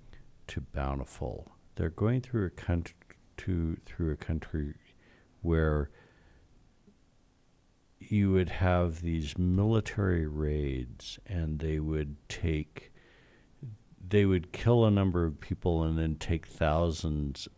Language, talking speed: English, 110 wpm